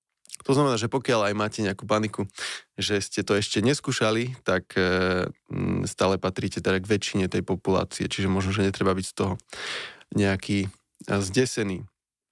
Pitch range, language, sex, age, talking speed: 95-110 Hz, Slovak, male, 20-39, 145 wpm